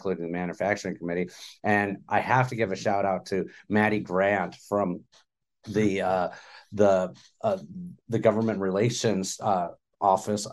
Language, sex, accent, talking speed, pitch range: English, male, American, 140 wpm, 95-115 Hz